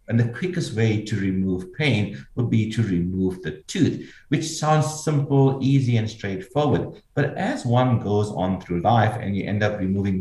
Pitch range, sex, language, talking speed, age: 100-135 Hz, male, English, 180 wpm, 60-79